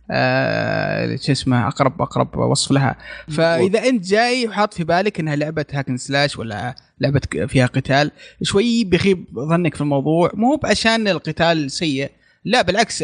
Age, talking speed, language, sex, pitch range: 20-39, 145 wpm, Arabic, male, 140-190 Hz